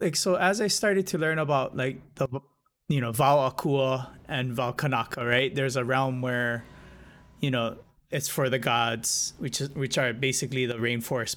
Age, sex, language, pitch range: 20-39, male, English, 120-145 Hz